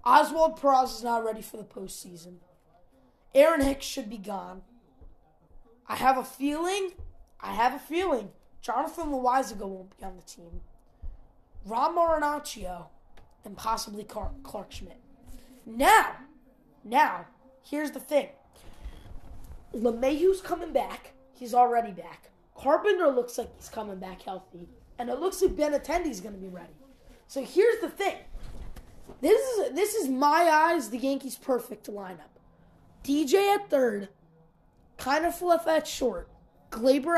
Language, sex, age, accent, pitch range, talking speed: English, female, 20-39, American, 225-320 Hz, 135 wpm